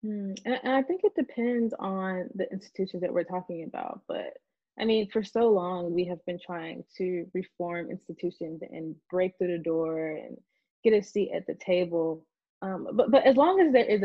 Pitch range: 170-210 Hz